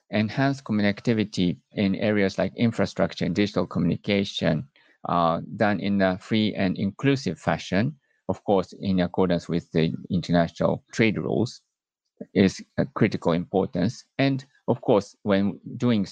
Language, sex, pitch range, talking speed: English, male, 90-110 Hz, 130 wpm